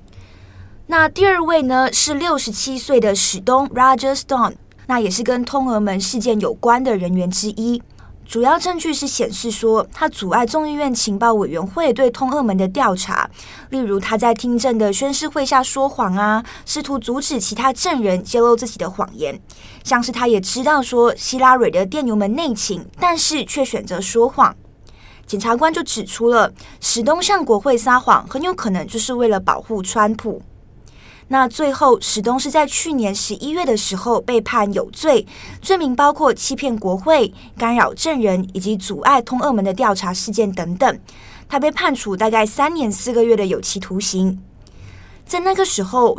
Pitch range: 210-275 Hz